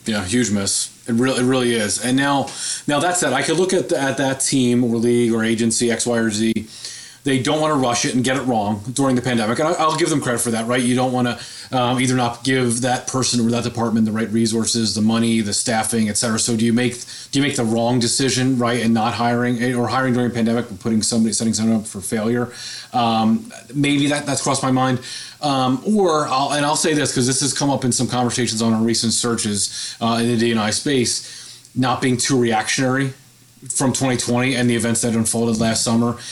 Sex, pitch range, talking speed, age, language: male, 115-130 Hz, 235 wpm, 30-49, English